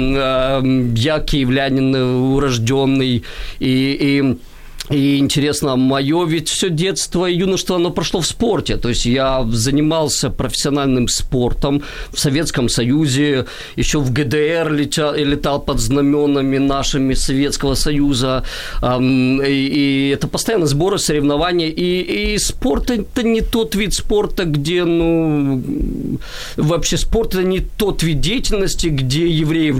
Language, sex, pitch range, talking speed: Ukrainian, male, 135-170 Hz, 125 wpm